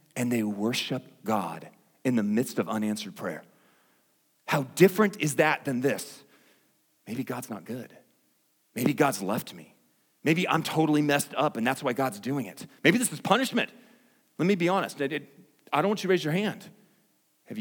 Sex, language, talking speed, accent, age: male, English, 175 wpm, American, 40-59